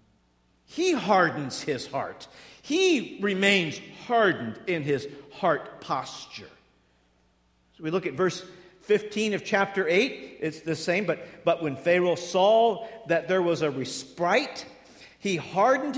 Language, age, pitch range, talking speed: English, 50-69, 140-205 Hz, 130 wpm